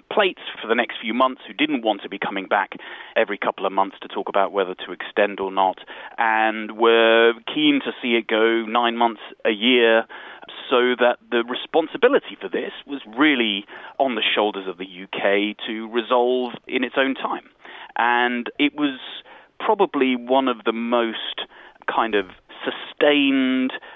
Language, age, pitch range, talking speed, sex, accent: English, 30-49, 105-130 Hz, 170 wpm, male, British